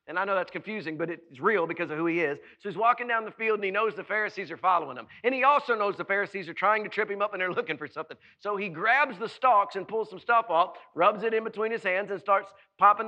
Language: English